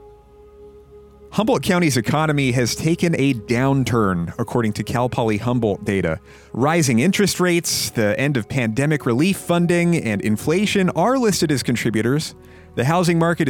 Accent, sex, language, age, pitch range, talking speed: American, male, English, 30-49, 105-155 Hz, 140 wpm